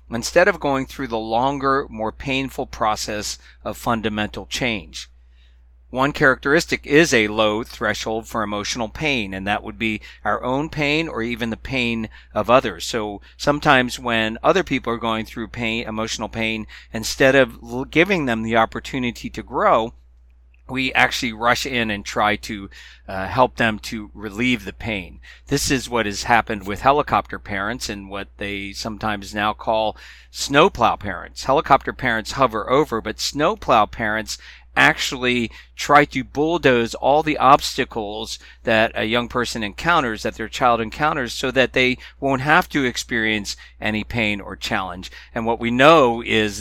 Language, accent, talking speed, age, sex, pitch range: English, American, 155 wpm, 40-59, male, 105-130 Hz